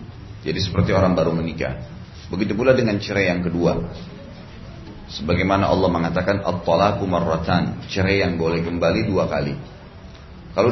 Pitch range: 90-110 Hz